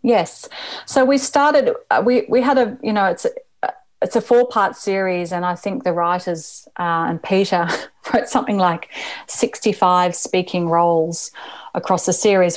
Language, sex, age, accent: English, female, 30-49, Australian